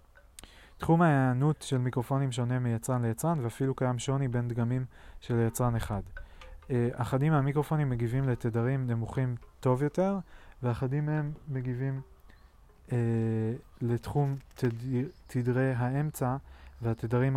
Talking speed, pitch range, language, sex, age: 105 wpm, 120-135 Hz, Hebrew, male, 20-39